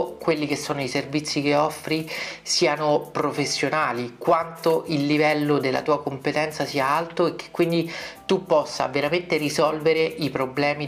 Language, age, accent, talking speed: Italian, 40-59, native, 145 wpm